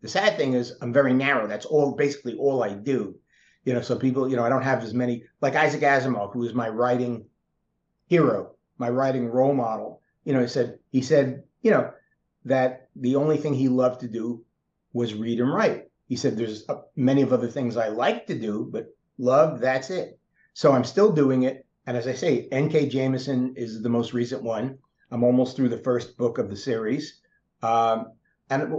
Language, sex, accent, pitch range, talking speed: English, male, American, 120-140 Hz, 205 wpm